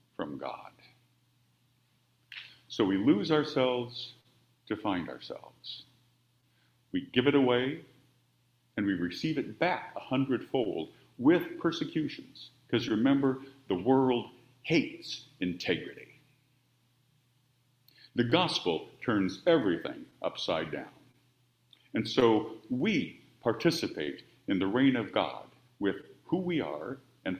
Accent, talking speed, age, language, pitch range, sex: American, 105 wpm, 50-69, English, 120-130 Hz, male